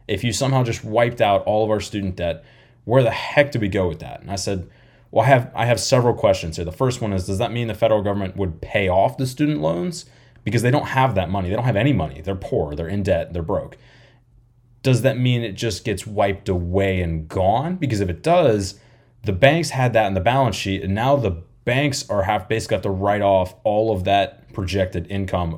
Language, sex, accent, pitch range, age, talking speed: English, male, American, 95-120 Hz, 20-39, 240 wpm